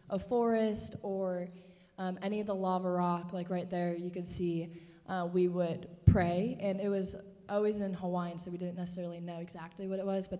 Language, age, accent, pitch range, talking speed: English, 20-39, American, 180-210 Hz, 200 wpm